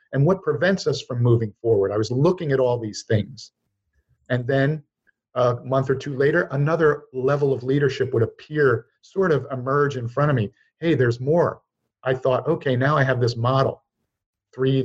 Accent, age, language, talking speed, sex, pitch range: American, 50-69, English, 185 wpm, male, 115-145 Hz